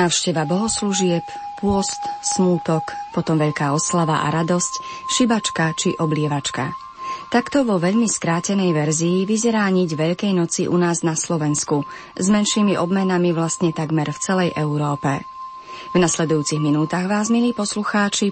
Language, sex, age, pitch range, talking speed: Slovak, female, 30-49, 160-205 Hz, 130 wpm